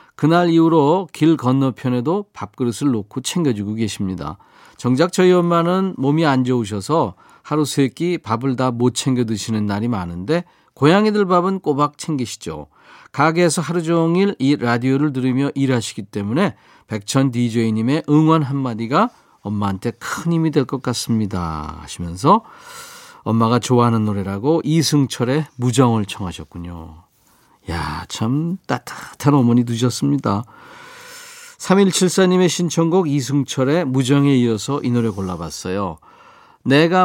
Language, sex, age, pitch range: Korean, male, 40-59, 115-165 Hz